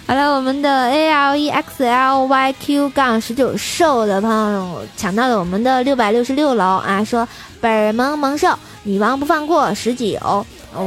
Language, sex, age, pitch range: Chinese, female, 20-39, 205-275 Hz